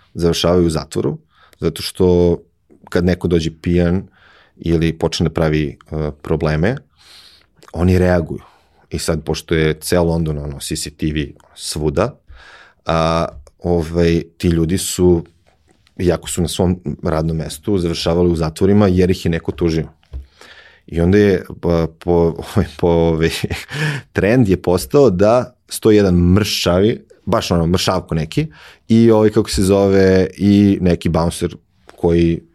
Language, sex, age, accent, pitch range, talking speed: English, male, 30-49, Croatian, 80-95 Hz, 130 wpm